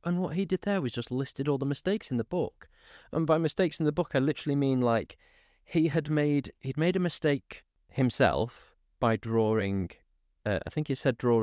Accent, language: British, English